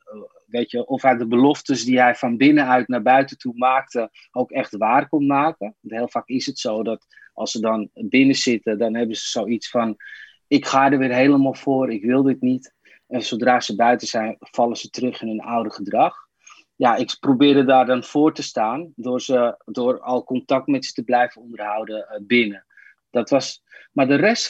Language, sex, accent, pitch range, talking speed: Dutch, male, Dutch, 120-155 Hz, 185 wpm